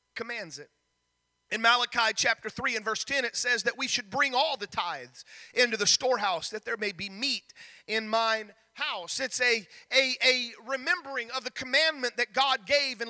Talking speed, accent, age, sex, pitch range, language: 190 wpm, American, 30-49, male, 225-280 Hz, English